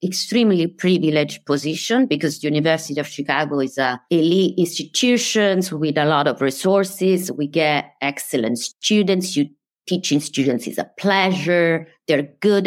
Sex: female